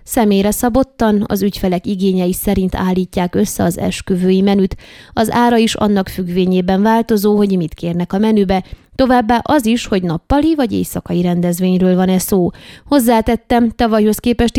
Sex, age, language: female, 20-39, Hungarian